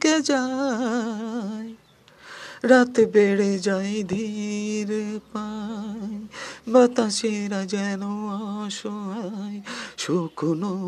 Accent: native